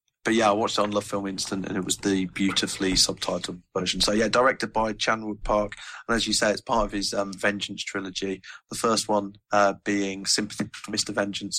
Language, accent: English, British